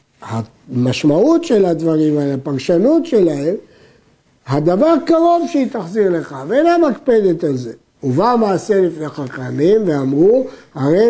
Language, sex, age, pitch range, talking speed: Hebrew, male, 60-79, 160-230 Hz, 115 wpm